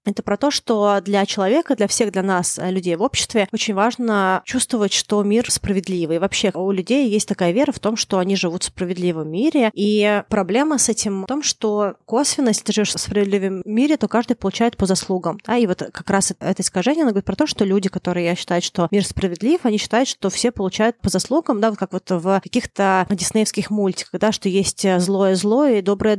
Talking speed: 210 wpm